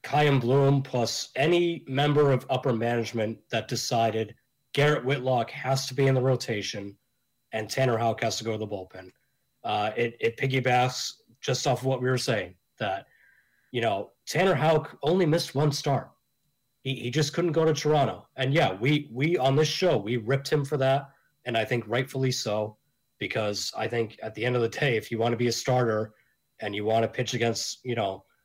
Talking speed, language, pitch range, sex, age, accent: 200 wpm, English, 115-140 Hz, male, 30-49, American